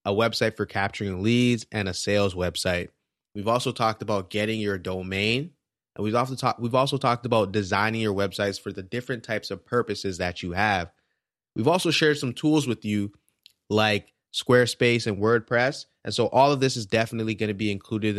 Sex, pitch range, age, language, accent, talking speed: male, 100-125 Hz, 20-39, English, American, 180 wpm